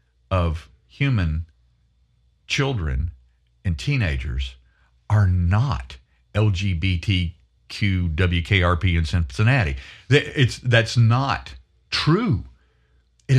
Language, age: English, 50-69